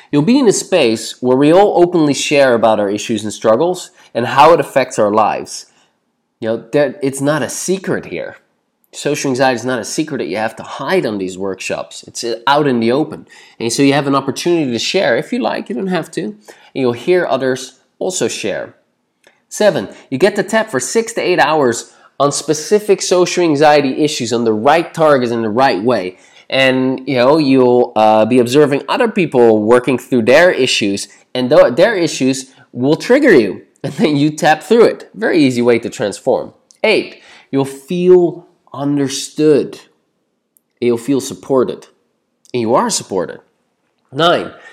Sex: male